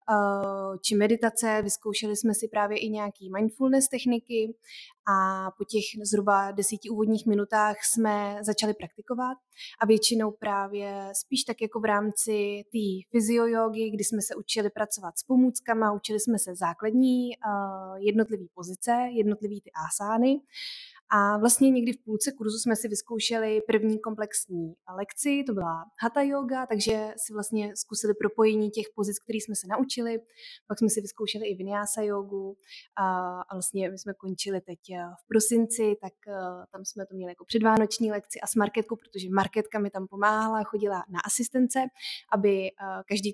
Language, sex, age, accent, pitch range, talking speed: Czech, female, 20-39, native, 200-230 Hz, 150 wpm